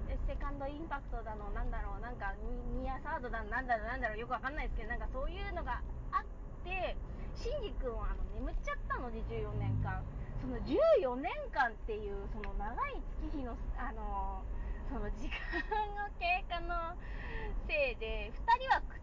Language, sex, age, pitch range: Japanese, female, 20-39, 245-390 Hz